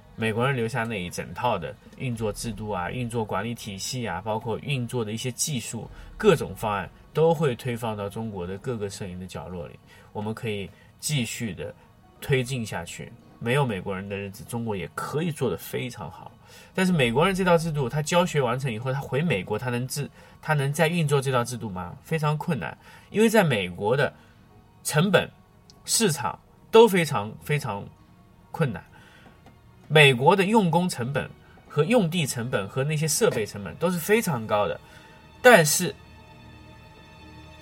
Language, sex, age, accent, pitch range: Chinese, male, 20-39, native, 110-160 Hz